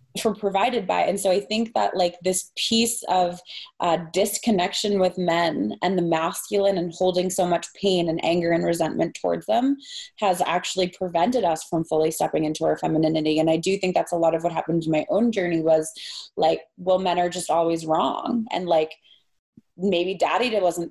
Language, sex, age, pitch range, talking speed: English, female, 20-39, 170-195 Hz, 190 wpm